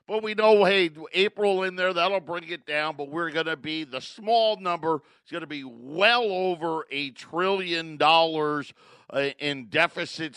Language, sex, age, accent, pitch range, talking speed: English, male, 50-69, American, 145-185 Hz, 175 wpm